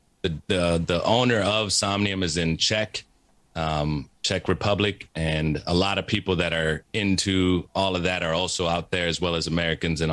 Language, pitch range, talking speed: English, 85-105 Hz, 185 wpm